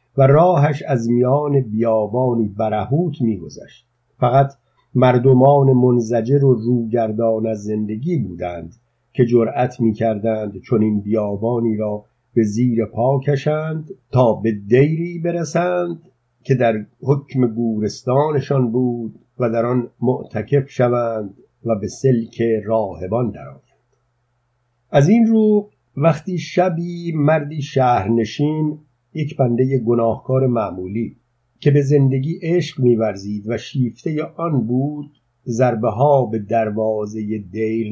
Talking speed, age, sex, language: 110 wpm, 50-69, male, Persian